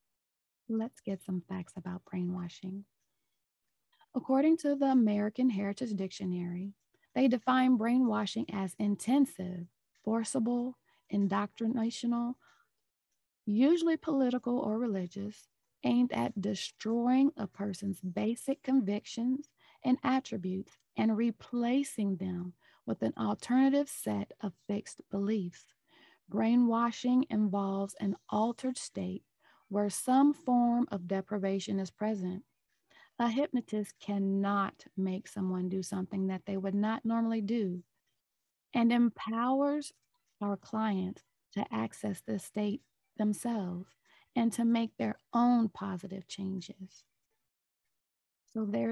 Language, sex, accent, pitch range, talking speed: English, female, American, 195-245 Hz, 105 wpm